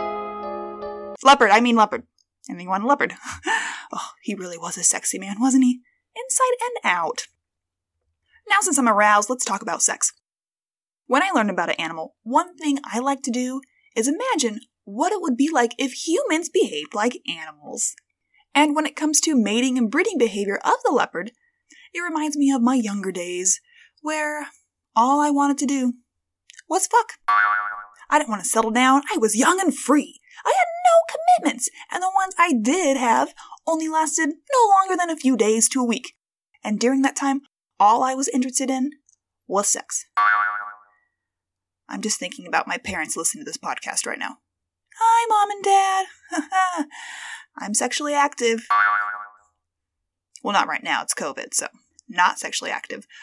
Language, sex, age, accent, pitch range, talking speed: English, female, 20-39, American, 205-325 Hz, 165 wpm